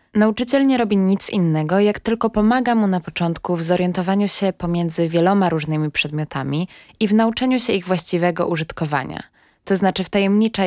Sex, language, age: female, Polish, 20-39